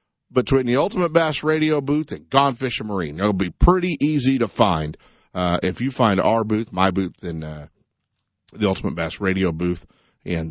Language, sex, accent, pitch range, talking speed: English, male, American, 90-145 Hz, 190 wpm